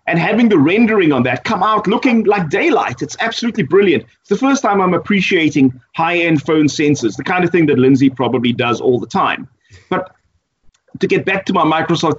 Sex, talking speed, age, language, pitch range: male, 200 wpm, 30-49, English, 130-185 Hz